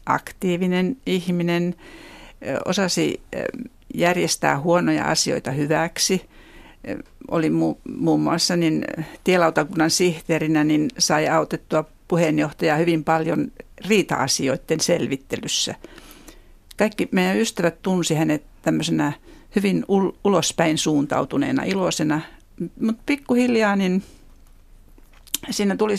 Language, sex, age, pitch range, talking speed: Finnish, female, 60-79, 155-200 Hz, 90 wpm